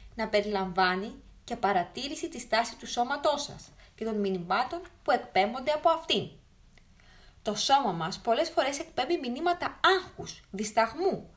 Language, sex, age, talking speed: Greek, female, 20-39, 130 wpm